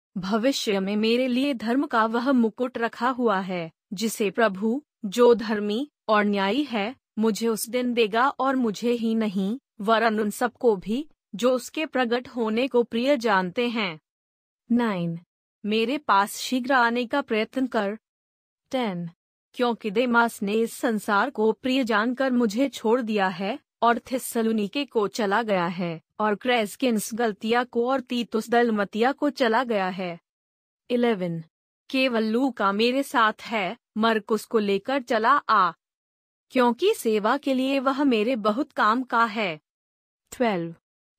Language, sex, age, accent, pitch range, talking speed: Hindi, female, 30-49, native, 210-245 Hz, 145 wpm